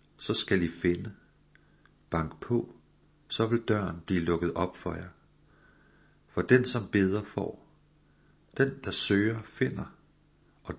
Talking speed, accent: 135 wpm, native